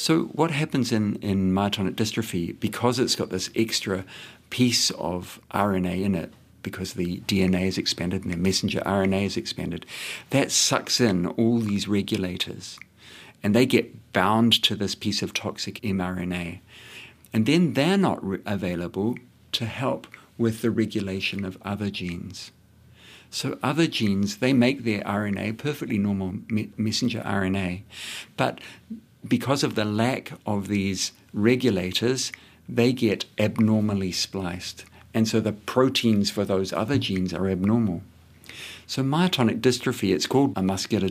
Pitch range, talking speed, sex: 95-115 Hz, 145 wpm, male